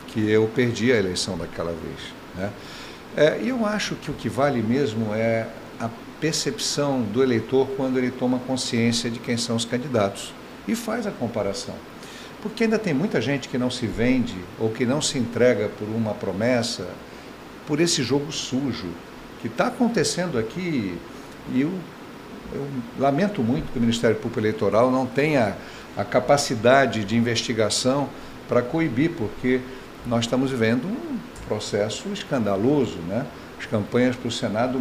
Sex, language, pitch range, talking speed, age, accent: male, Portuguese, 115-145 Hz, 155 wpm, 60-79, Brazilian